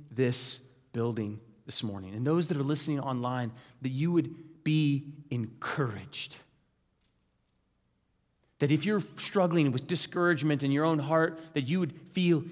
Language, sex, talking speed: English, male, 140 wpm